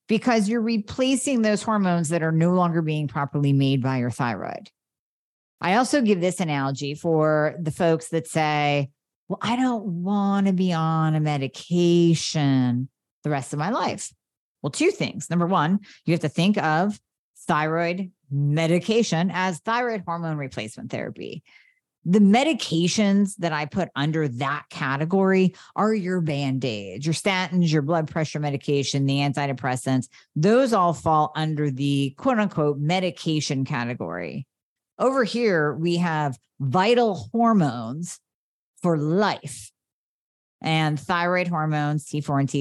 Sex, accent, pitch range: female, American, 140-185 Hz